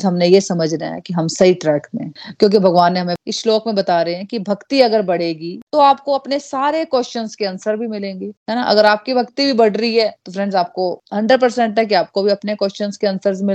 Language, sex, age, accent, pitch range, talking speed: Hindi, female, 30-49, native, 180-230 Hz, 155 wpm